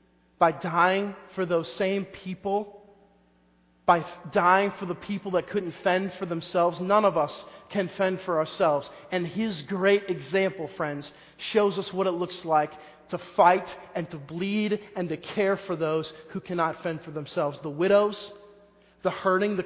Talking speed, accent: 165 wpm, American